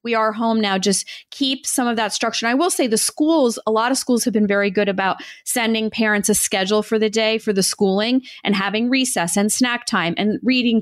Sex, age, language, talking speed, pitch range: female, 30-49, English, 240 wpm, 195-240 Hz